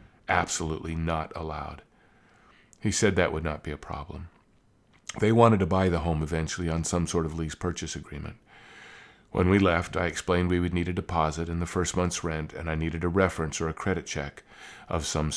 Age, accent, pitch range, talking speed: 50-69, American, 80-95 Hz, 200 wpm